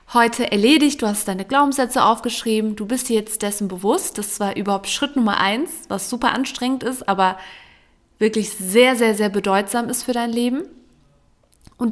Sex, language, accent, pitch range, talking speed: female, German, German, 215-275 Hz, 170 wpm